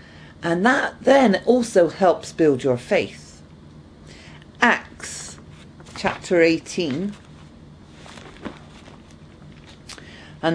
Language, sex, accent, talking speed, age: English, female, British, 70 wpm, 50-69